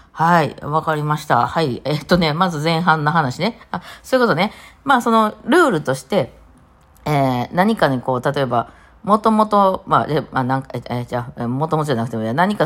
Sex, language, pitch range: female, Japanese, 125-195 Hz